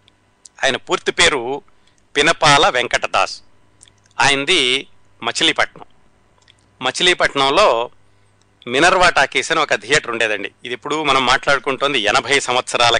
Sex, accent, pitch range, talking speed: male, native, 120-155 Hz, 90 wpm